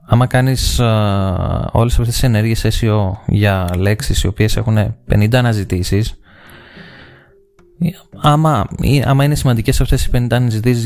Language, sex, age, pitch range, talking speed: Greek, male, 20-39, 100-120 Hz, 120 wpm